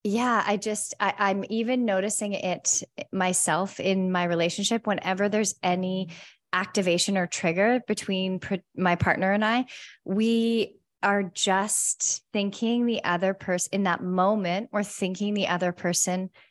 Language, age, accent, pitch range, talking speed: English, 20-39, American, 185-215 Hz, 135 wpm